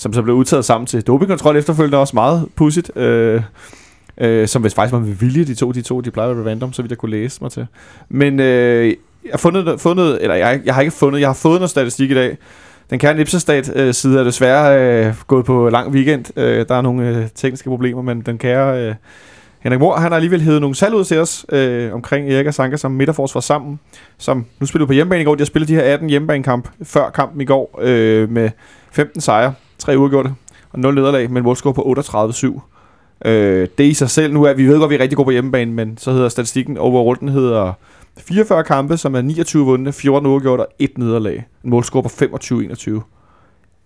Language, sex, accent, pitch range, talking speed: Danish, male, native, 115-140 Hz, 225 wpm